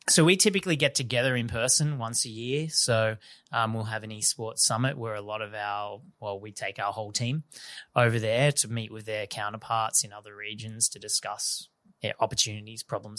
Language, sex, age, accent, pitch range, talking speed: English, male, 20-39, Australian, 105-125 Hz, 190 wpm